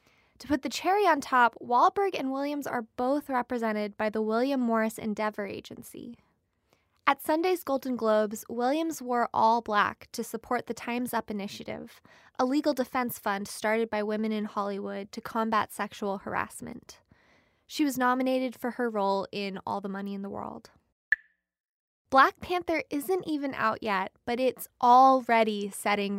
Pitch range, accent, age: 215-280 Hz, American, 20-39